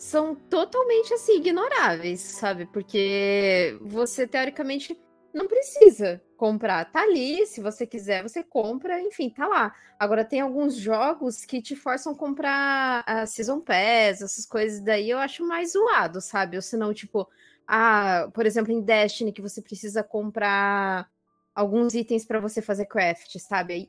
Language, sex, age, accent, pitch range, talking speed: Portuguese, female, 20-39, Brazilian, 220-330 Hz, 155 wpm